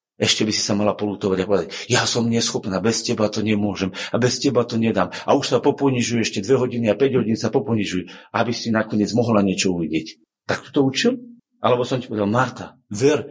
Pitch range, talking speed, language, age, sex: 95-125 Hz, 210 wpm, Slovak, 40-59, male